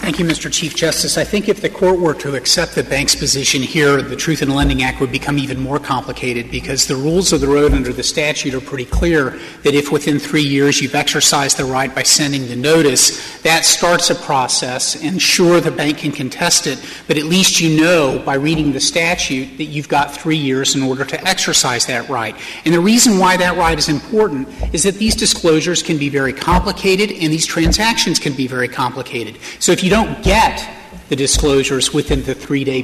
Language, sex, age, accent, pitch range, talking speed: English, male, 40-59, American, 145-190 Hz, 210 wpm